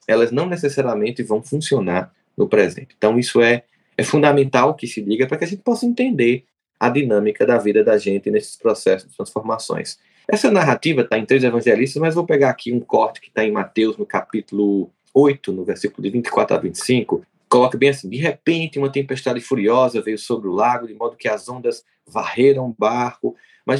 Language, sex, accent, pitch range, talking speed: Portuguese, male, Brazilian, 120-175 Hz, 195 wpm